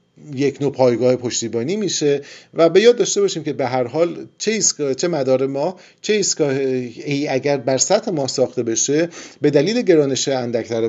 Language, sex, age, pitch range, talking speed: Persian, male, 40-59, 120-155 Hz, 165 wpm